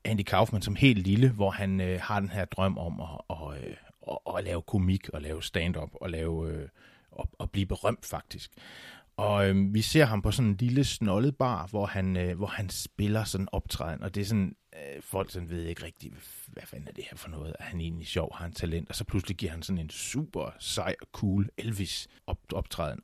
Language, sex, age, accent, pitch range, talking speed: Danish, male, 30-49, native, 95-125 Hz, 215 wpm